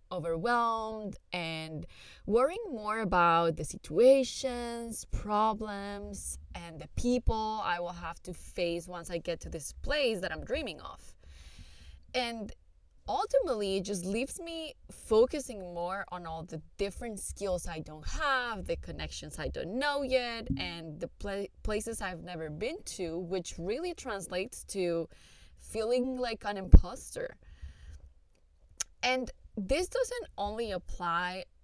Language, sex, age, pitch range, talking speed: English, female, 20-39, 165-225 Hz, 130 wpm